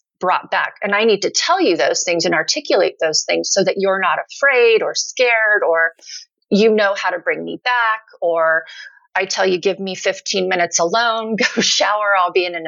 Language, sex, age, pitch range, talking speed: English, female, 30-49, 175-235 Hz, 210 wpm